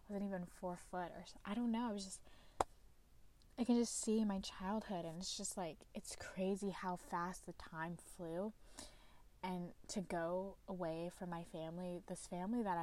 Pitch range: 175-195 Hz